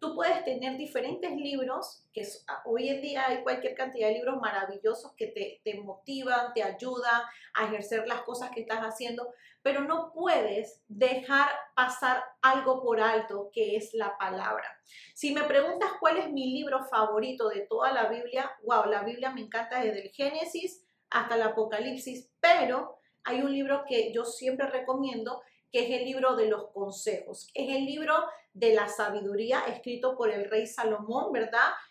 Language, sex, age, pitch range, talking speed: Spanish, female, 30-49, 225-285 Hz, 170 wpm